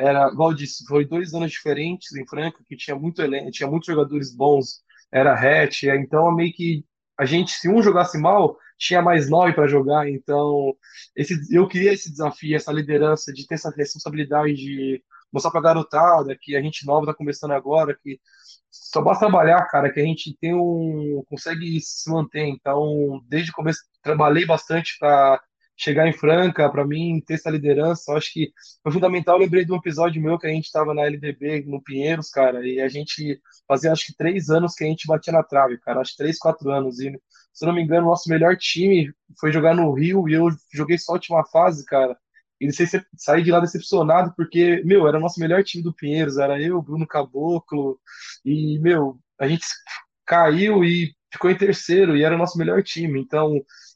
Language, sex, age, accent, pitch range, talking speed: Portuguese, male, 20-39, Brazilian, 145-170 Hz, 205 wpm